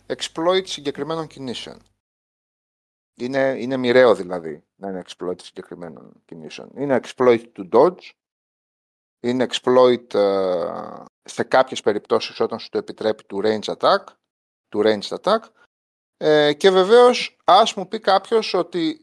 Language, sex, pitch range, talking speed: Greek, male, 120-185 Hz, 125 wpm